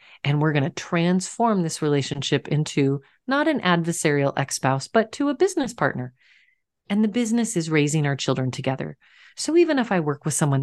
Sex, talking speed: female, 180 wpm